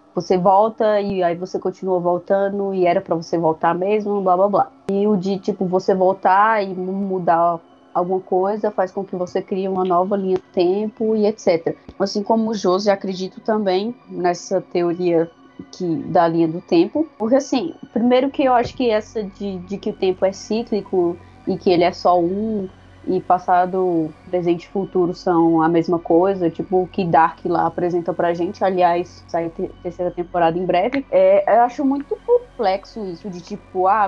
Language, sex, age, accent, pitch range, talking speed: Portuguese, female, 20-39, Brazilian, 180-215 Hz, 185 wpm